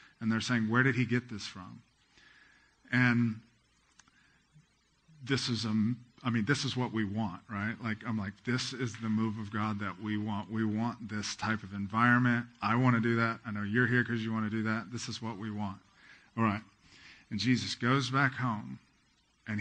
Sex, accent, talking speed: male, American, 205 wpm